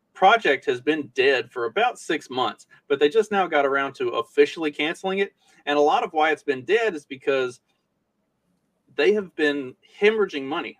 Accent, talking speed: American, 185 wpm